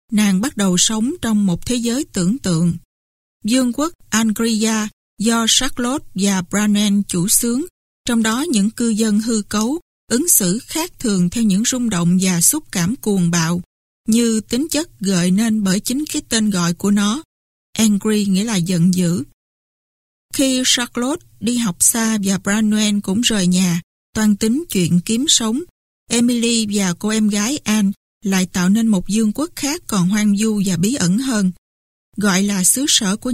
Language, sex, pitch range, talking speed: Vietnamese, female, 195-245 Hz, 175 wpm